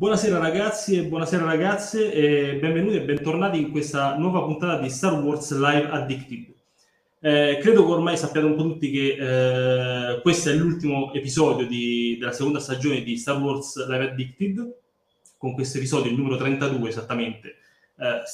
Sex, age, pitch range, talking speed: male, 20-39, 130-160 Hz, 160 wpm